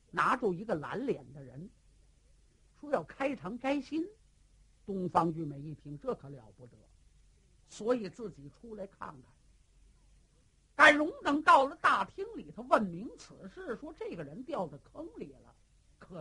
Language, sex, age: Chinese, male, 50-69